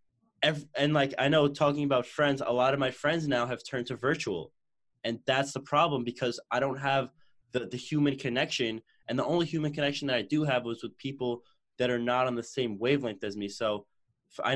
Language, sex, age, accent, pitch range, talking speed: English, male, 20-39, American, 105-125 Hz, 220 wpm